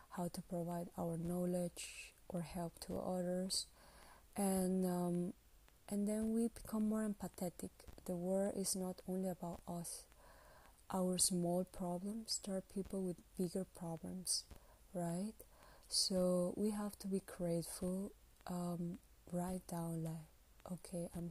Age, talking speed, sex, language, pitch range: 20-39, 125 wpm, female, English, 170-190 Hz